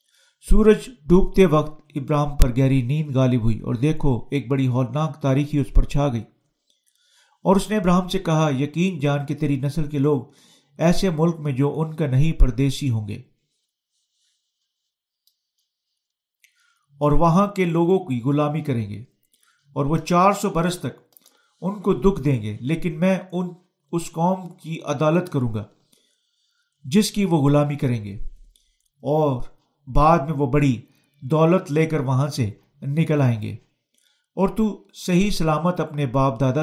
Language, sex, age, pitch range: Urdu, male, 50-69, 140-175 Hz